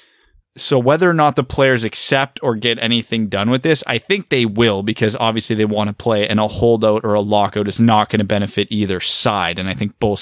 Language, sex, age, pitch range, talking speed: English, male, 20-39, 105-140 Hz, 235 wpm